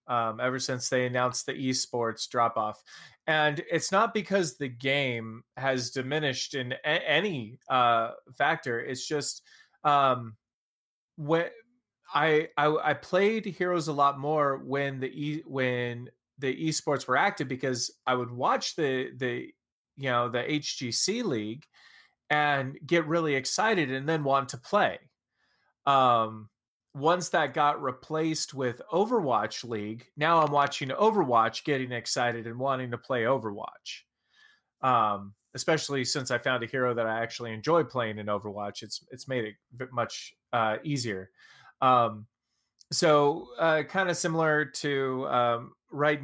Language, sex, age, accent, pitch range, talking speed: English, male, 30-49, American, 120-150 Hz, 140 wpm